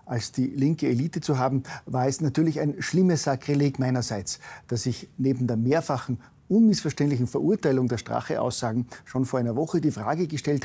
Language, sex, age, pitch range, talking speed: German, male, 50-69, 125-155 Hz, 165 wpm